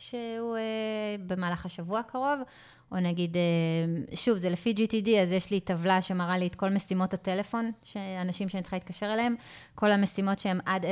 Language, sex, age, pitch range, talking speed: Hebrew, female, 20-39, 175-200 Hz, 160 wpm